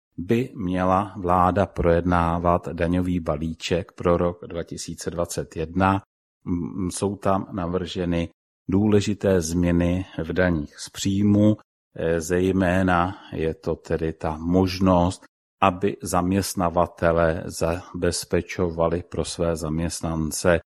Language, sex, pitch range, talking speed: Czech, male, 85-95 Hz, 85 wpm